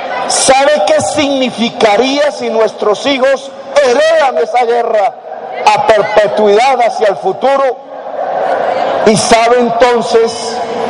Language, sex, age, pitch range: Spanish, male, 50-69, 225-310 Hz